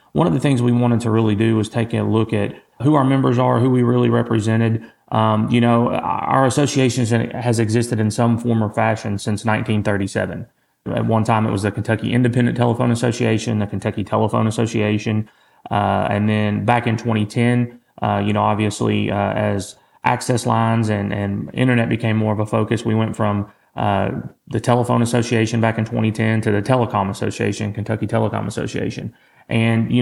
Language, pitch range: English, 105-120 Hz